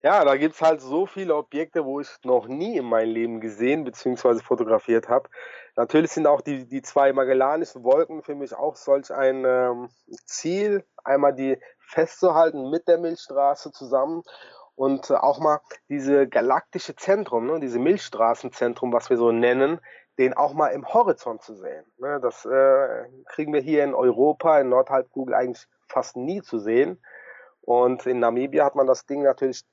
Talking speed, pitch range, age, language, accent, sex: 170 wpm, 130-165 Hz, 30-49, German, German, male